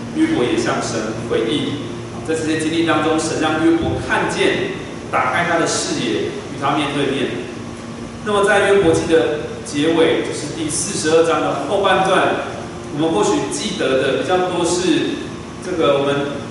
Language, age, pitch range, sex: Chinese, 30-49, 155-230 Hz, male